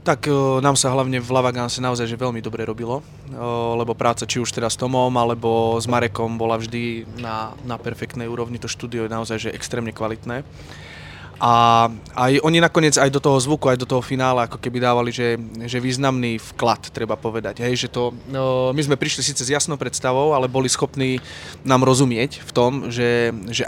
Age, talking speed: 20-39, 190 wpm